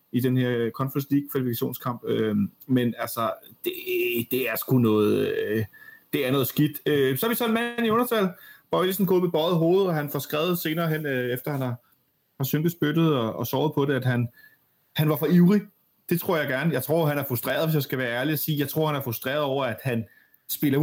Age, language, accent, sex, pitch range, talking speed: 30-49, Danish, native, male, 135-180 Hz, 235 wpm